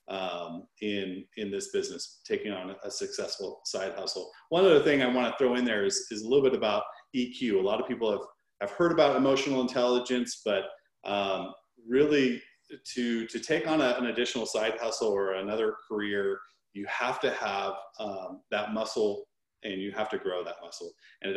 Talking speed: 190 wpm